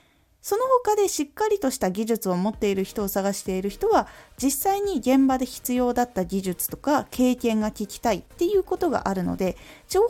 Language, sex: Japanese, female